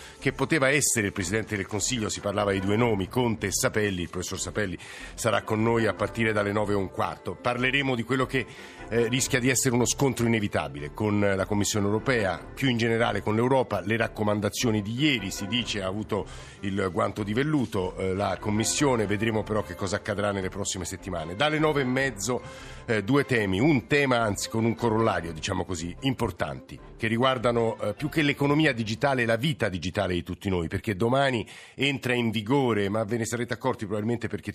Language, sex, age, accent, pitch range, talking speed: Italian, male, 50-69, native, 100-125 Hz, 195 wpm